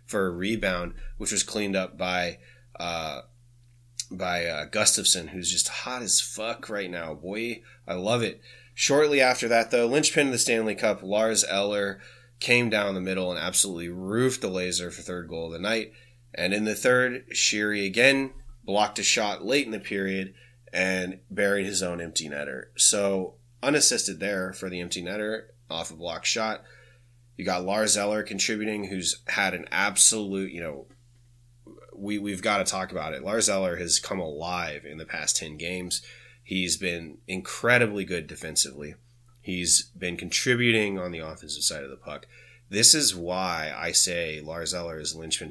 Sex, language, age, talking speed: male, English, 20-39, 175 wpm